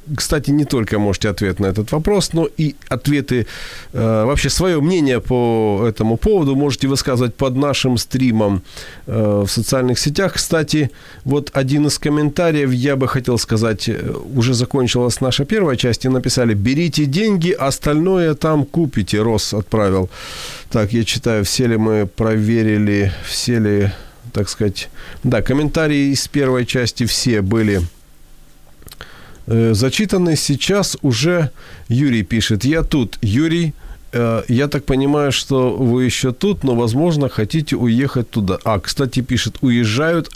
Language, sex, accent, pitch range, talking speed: Ukrainian, male, native, 110-145 Hz, 135 wpm